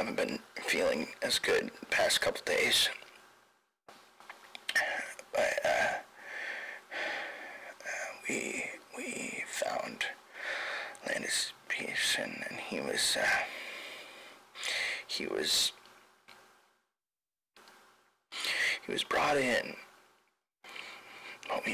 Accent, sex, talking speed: American, male, 80 wpm